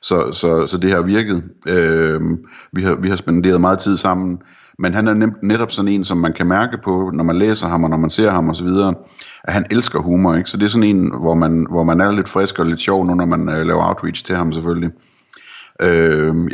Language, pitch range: Danish, 85-95 Hz